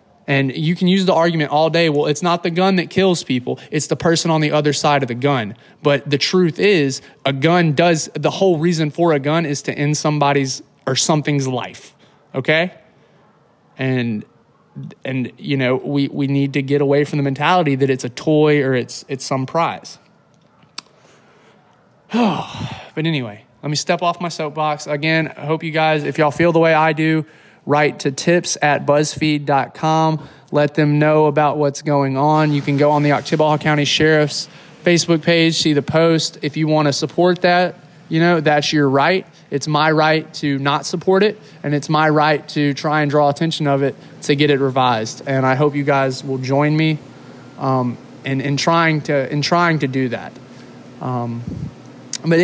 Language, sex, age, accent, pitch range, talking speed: English, male, 20-39, American, 140-165 Hz, 190 wpm